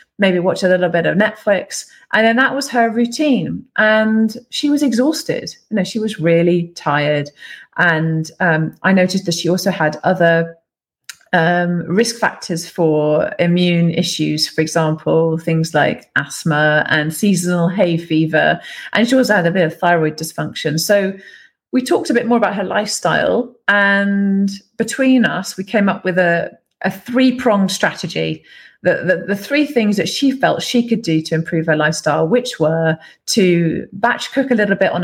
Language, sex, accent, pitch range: English, female, British, 165-220 Hz